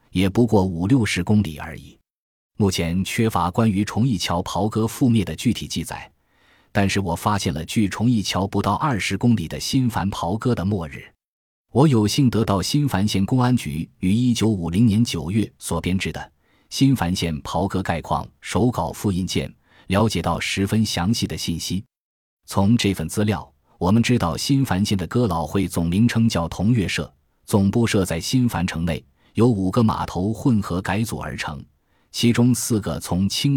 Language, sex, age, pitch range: Chinese, male, 20-39, 85-115 Hz